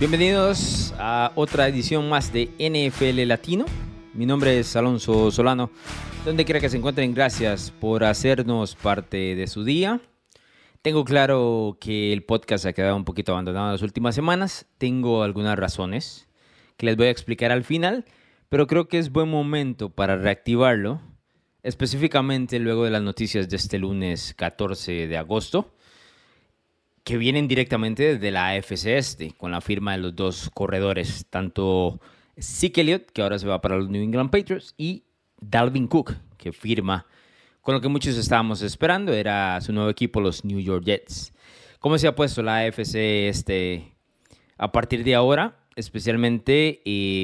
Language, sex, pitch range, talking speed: Spanish, male, 100-135 Hz, 160 wpm